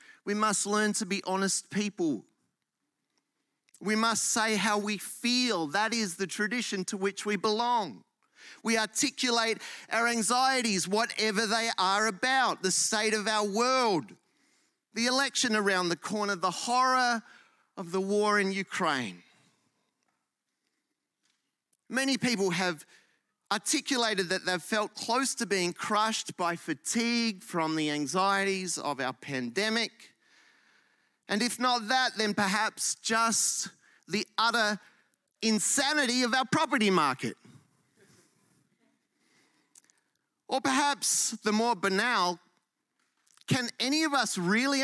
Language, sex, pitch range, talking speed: English, male, 195-255 Hz, 120 wpm